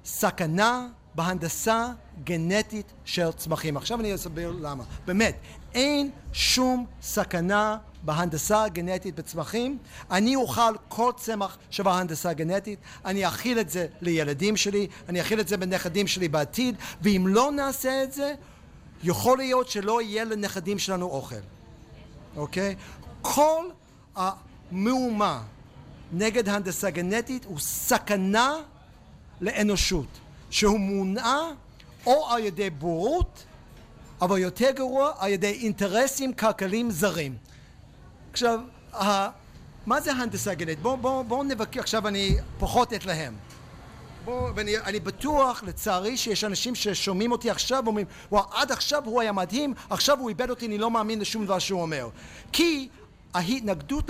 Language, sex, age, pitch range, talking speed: Hebrew, male, 50-69, 180-245 Hz, 120 wpm